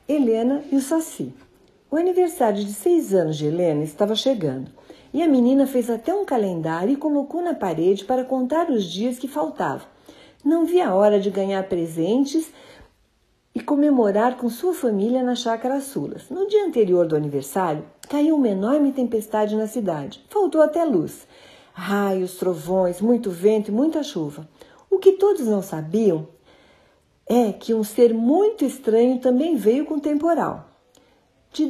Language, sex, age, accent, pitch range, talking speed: Portuguese, female, 60-79, Brazilian, 190-295 Hz, 155 wpm